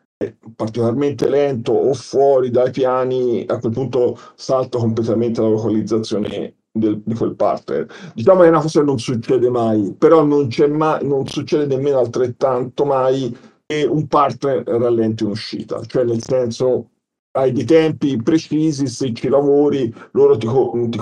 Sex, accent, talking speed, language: male, native, 150 wpm, Italian